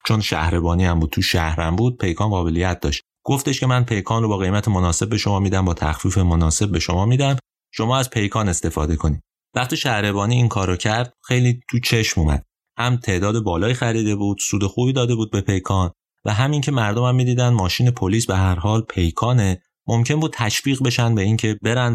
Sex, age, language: male, 30-49, Persian